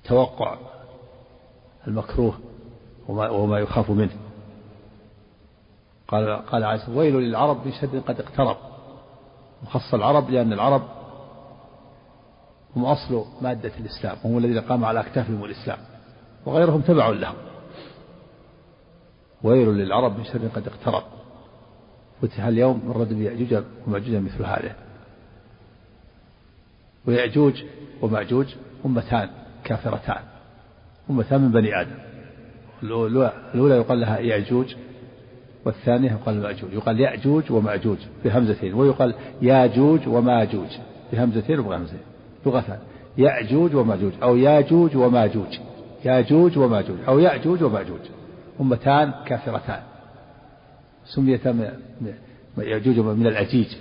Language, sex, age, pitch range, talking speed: Arabic, male, 50-69, 110-135 Hz, 95 wpm